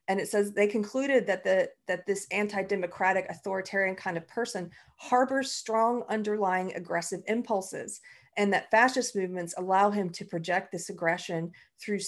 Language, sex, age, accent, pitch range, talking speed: English, female, 40-59, American, 185-240 Hz, 150 wpm